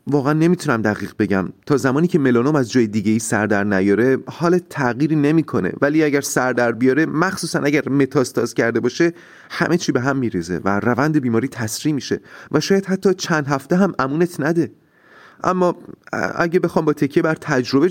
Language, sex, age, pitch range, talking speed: Persian, male, 30-49, 105-150 Hz, 180 wpm